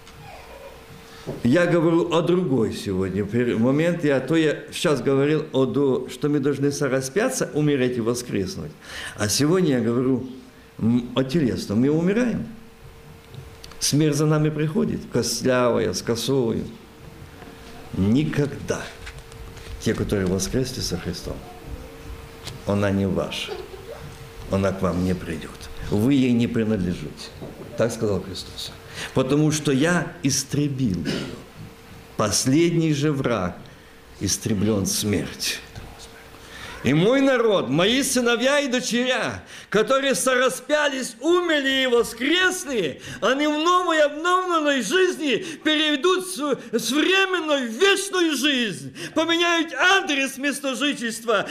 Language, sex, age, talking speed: Russian, male, 50-69, 105 wpm